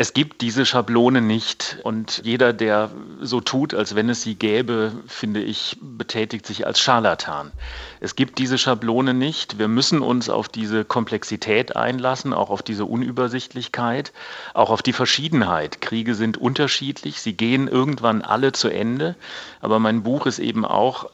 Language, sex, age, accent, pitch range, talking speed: German, male, 40-59, German, 110-130 Hz, 160 wpm